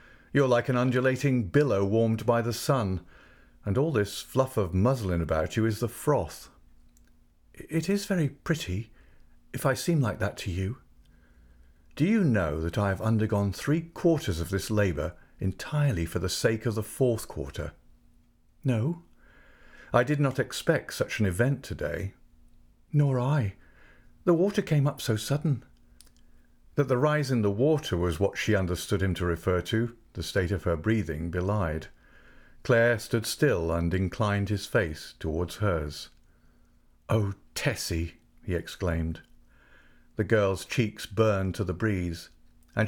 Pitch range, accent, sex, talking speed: 85-125 Hz, British, male, 155 wpm